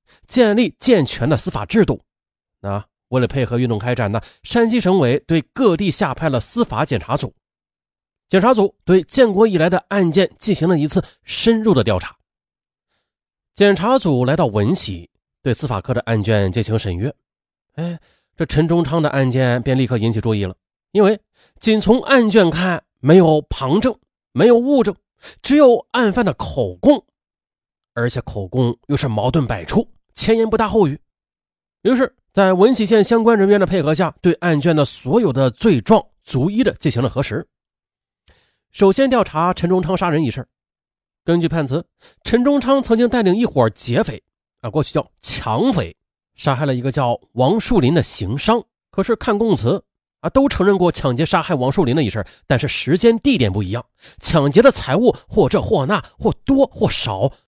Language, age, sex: Chinese, 30-49, male